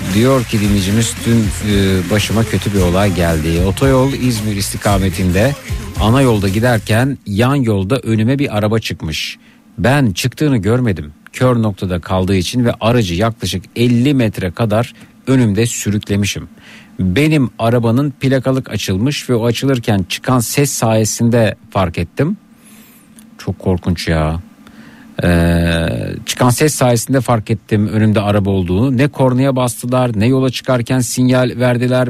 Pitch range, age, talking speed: 110-130 Hz, 50-69, 130 wpm